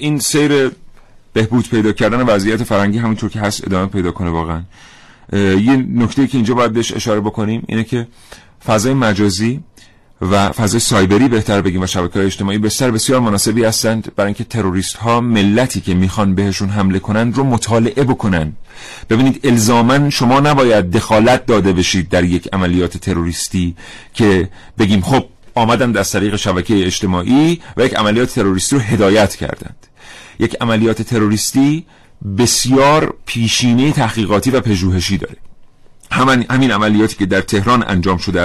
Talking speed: 145 wpm